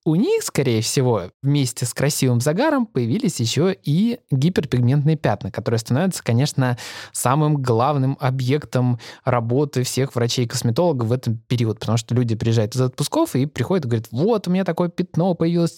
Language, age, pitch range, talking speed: Russian, 20-39, 120-175 Hz, 155 wpm